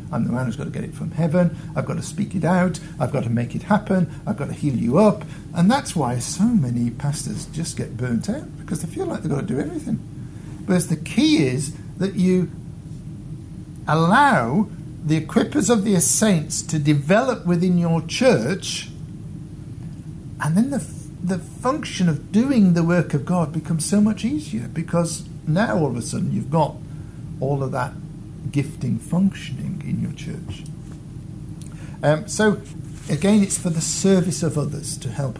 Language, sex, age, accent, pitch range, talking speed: English, male, 60-79, British, 145-175 Hz, 180 wpm